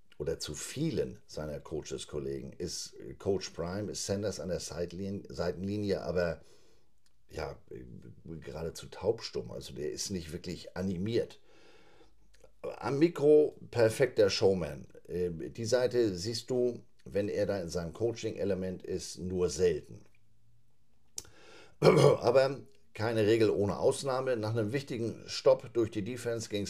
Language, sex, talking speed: German, male, 120 wpm